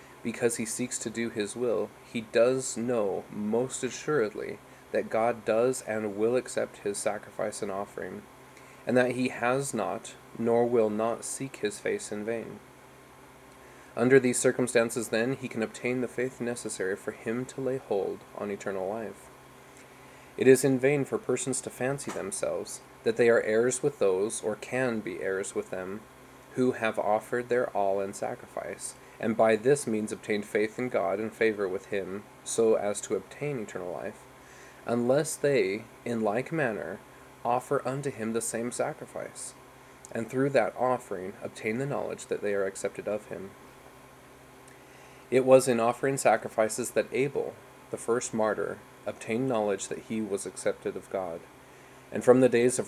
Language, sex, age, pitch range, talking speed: English, male, 20-39, 110-130 Hz, 165 wpm